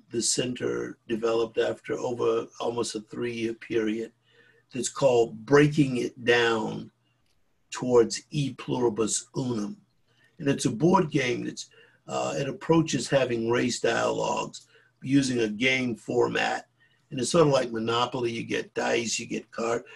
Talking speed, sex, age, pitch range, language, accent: 140 wpm, male, 50-69, 115-140 Hz, English, American